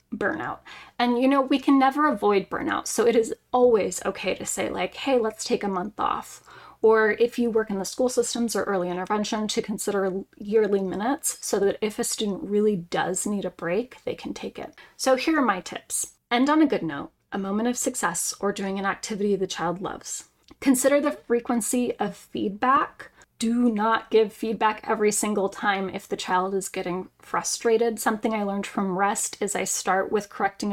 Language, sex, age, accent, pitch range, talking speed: English, female, 10-29, American, 195-250 Hz, 195 wpm